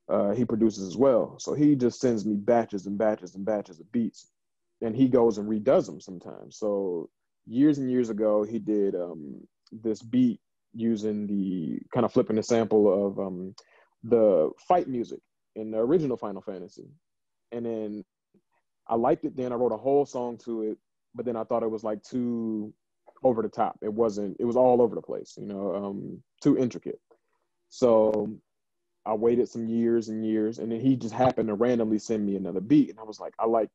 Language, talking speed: English, 200 wpm